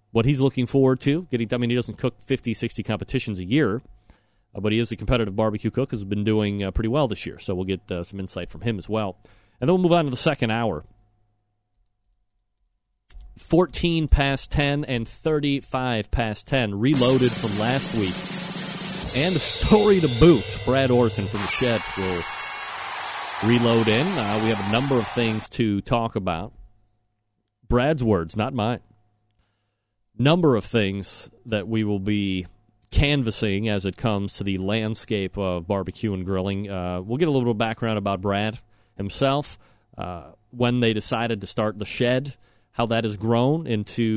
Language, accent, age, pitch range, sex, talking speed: English, American, 30-49, 105-125 Hz, male, 170 wpm